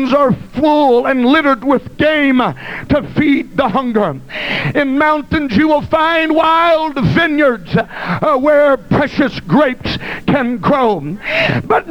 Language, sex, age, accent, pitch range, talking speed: English, male, 60-79, American, 240-300 Hz, 115 wpm